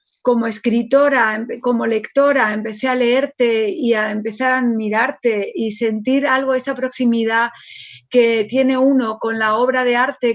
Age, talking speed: 40-59, 145 wpm